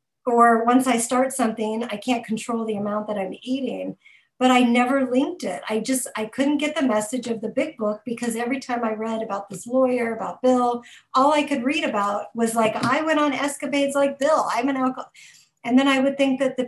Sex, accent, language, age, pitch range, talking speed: female, American, English, 50-69, 220-265 Hz, 225 wpm